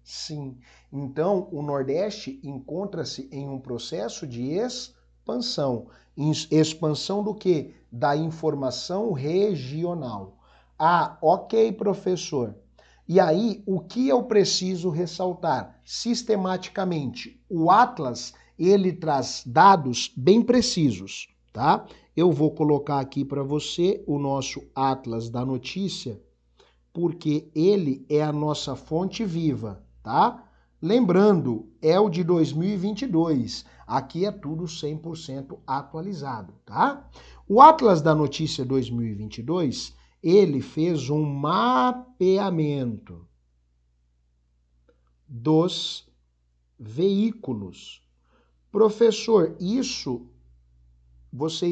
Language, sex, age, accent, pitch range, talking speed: Portuguese, male, 50-69, Brazilian, 125-185 Hz, 90 wpm